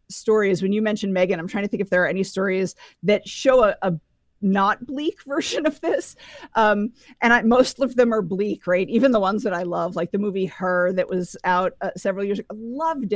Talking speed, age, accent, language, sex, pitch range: 230 wpm, 40-59, American, English, female, 180-225 Hz